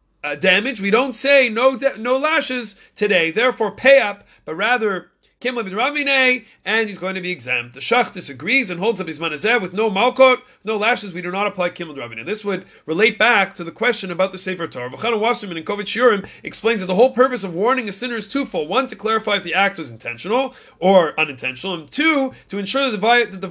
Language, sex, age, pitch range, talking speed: English, male, 30-49, 185-250 Hz, 205 wpm